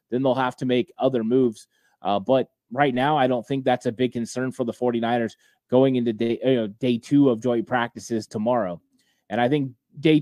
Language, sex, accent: English, male, American